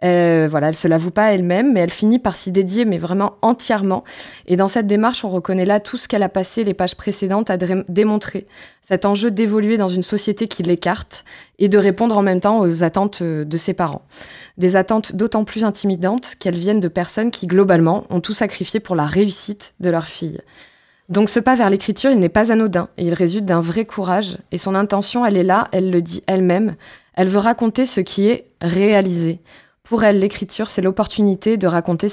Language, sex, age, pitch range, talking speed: French, female, 20-39, 175-210 Hz, 210 wpm